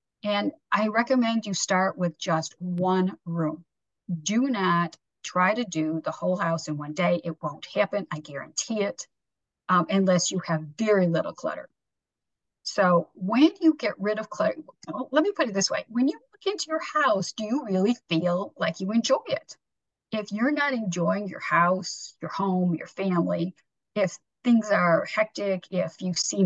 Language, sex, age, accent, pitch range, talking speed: English, female, 50-69, American, 170-215 Hz, 175 wpm